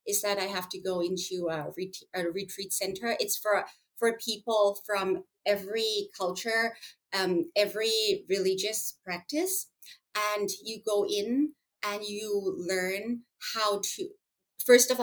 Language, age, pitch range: English, 30-49, 180-210 Hz